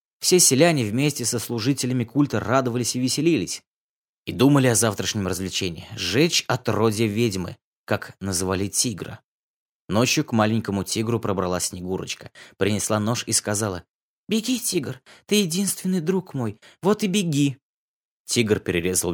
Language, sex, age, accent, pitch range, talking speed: Russian, male, 20-39, native, 100-135 Hz, 130 wpm